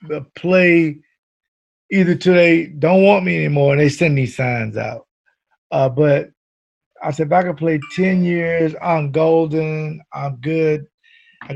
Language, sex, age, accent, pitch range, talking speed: English, male, 50-69, American, 145-180 Hz, 150 wpm